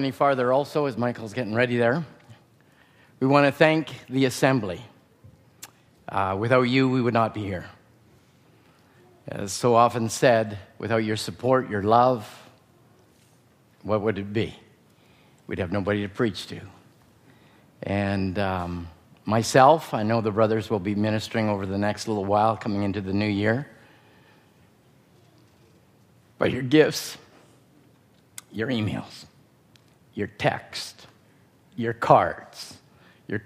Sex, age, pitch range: male, 50-69, 110-140 Hz